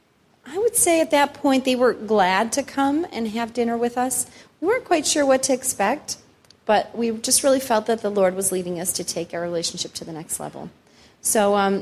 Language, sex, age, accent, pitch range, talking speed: English, female, 30-49, American, 180-230 Hz, 220 wpm